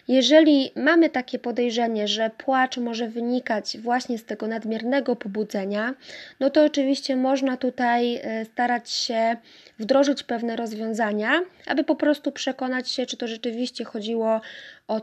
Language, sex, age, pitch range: Polish, female, 20-39, 225-270 Hz